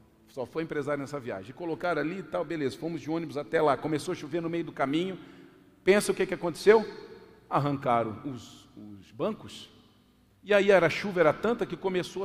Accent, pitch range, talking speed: Brazilian, 135-195 Hz, 190 wpm